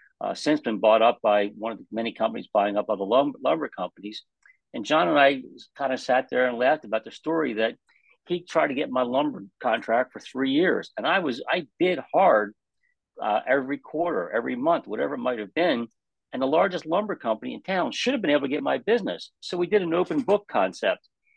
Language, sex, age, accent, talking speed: English, male, 50-69, American, 220 wpm